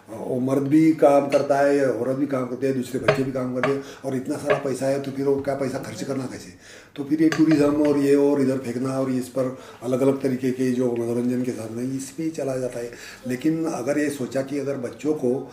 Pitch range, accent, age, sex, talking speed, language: 120-145 Hz, native, 40-59, male, 245 wpm, Hindi